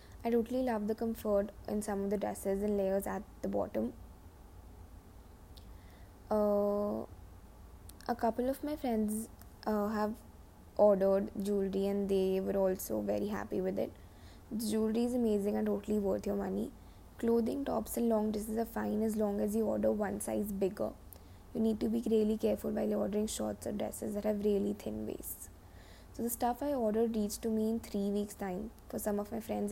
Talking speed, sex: 185 wpm, female